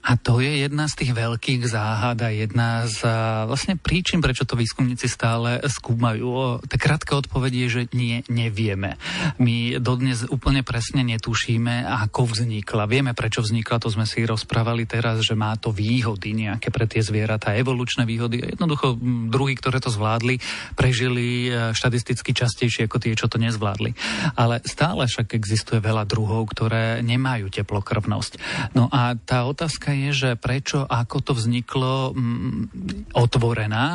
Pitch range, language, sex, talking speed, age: 115-130 Hz, Slovak, male, 150 wpm, 40-59